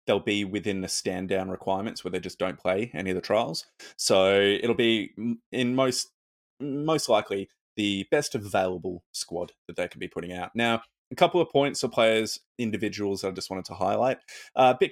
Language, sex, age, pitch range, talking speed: English, male, 20-39, 95-115 Hz, 195 wpm